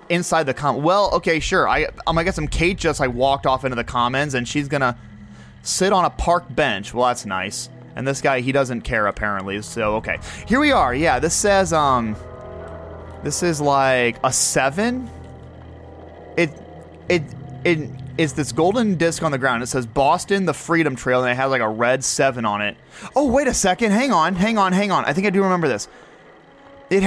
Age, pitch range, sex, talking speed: 30-49, 120-175 Hz, male, 205 wpm